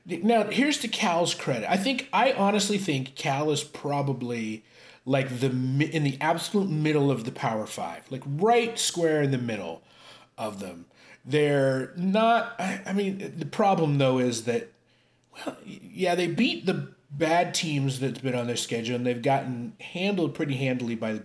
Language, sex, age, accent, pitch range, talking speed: English, male, 30-49, American, 115-170 Hz, 170 wpm